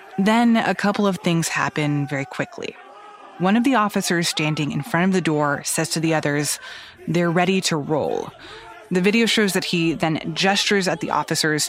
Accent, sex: American, female